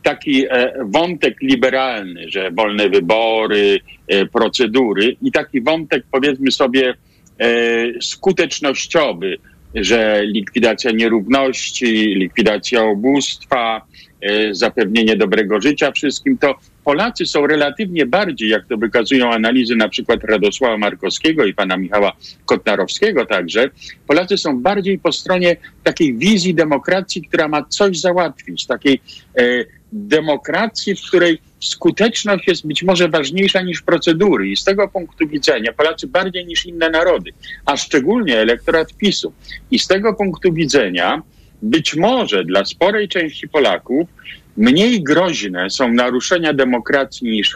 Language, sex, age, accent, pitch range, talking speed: Polish, male, 50-69, native, 115-180 Hz, 125 wpm